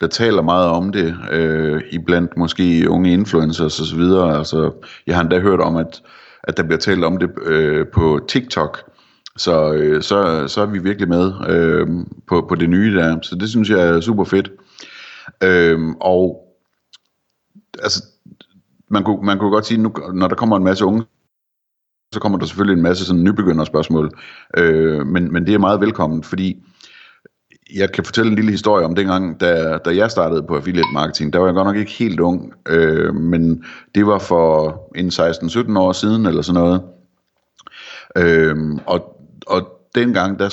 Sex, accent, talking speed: male, native, 180 wpm